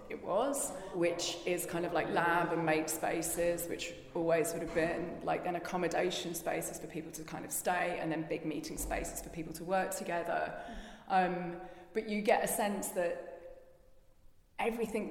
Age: 20-39